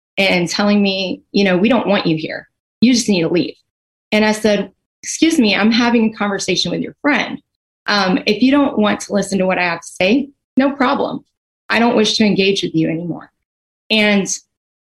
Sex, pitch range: female, 195-240 Hz